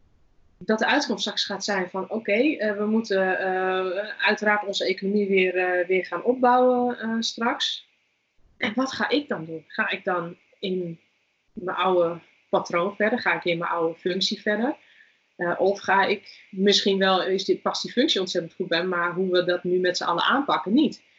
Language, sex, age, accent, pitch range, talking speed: Dutch, female, 20-39, Dutch, 180-225 Hz, 190 wpm